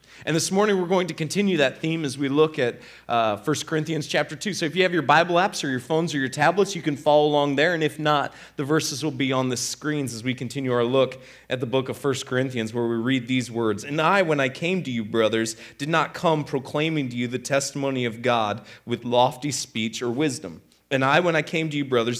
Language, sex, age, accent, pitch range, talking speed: English, male, 30-49, American, 130-170 Hz, 250 wpm